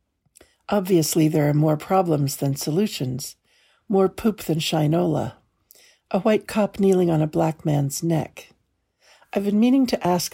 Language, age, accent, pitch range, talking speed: English, 60-79, American, 150-195 Hz, 145 wpm